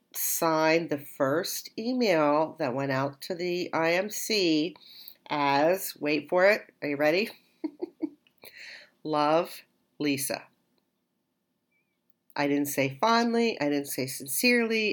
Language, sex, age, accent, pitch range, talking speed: English, female, 50-69, American, 145-205 Hz, 110 wpm